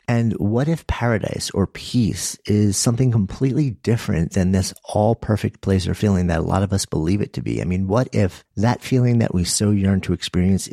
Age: 50-69